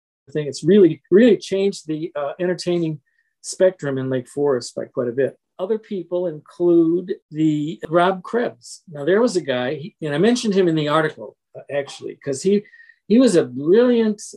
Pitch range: 140-190 Hz